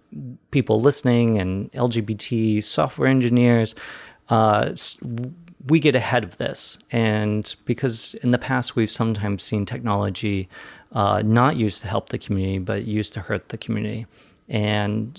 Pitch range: 100-120 Hz